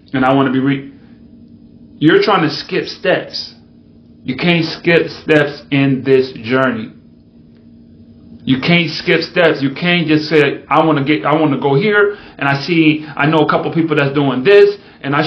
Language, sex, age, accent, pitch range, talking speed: English, male, 30-49, American, 125-155 Hz, 185 wpm